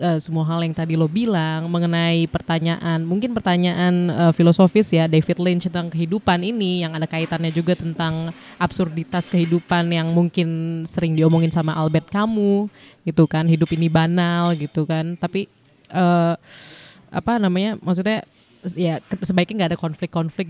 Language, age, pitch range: Indonesian, 20-39, 165-200 Hz